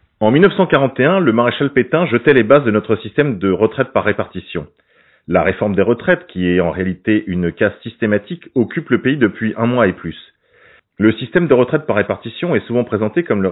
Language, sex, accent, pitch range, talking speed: French, male, French, 100-135 Hz, 200 wpm